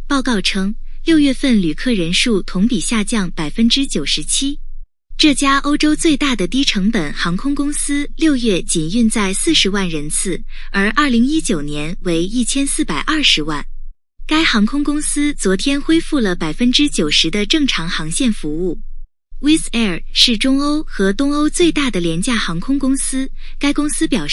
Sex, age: female, 20-39